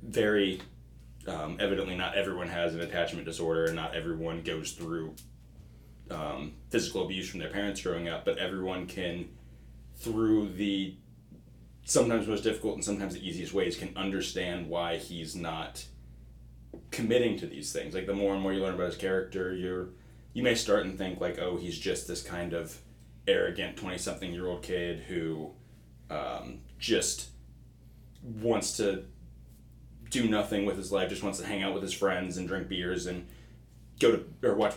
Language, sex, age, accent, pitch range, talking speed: English, male, 20-39, American, 75-100 Hz, 165 wpm